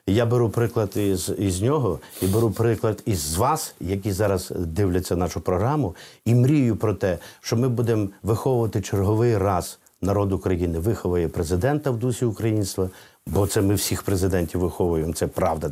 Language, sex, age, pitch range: Ukrainian, male, 50-69, 95-120 Hz